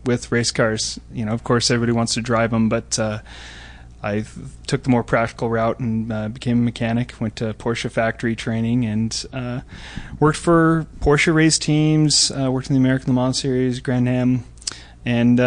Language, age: English, 30-49